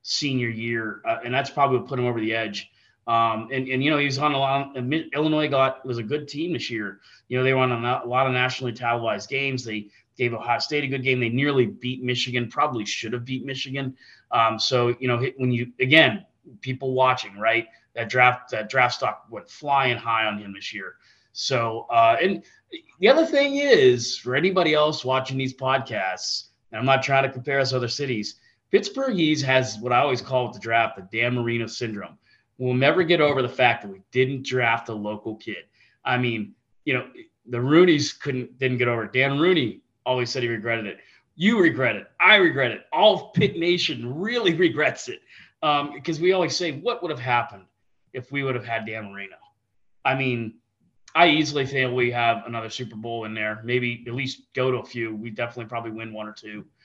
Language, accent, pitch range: English, American, 115-140 Hz